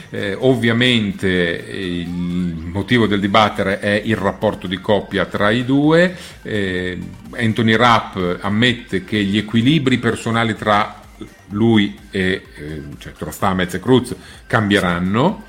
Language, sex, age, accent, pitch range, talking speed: Italian, male, 40-59, native, 95-125 Hz, 125 wpm